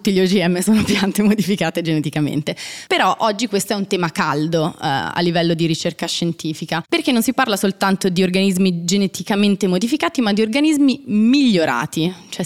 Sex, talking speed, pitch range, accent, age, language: female, 165 wpm, 170-215 Hz, native, 20-39, Italian